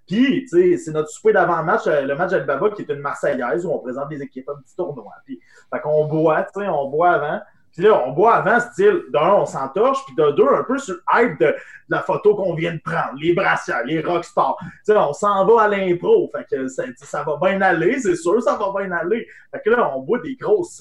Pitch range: 150-220 Hz